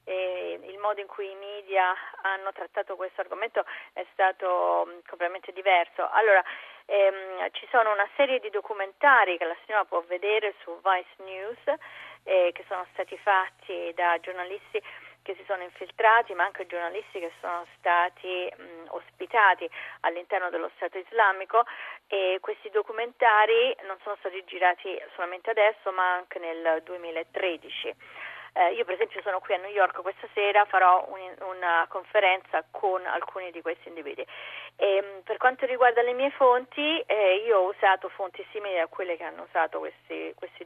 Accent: native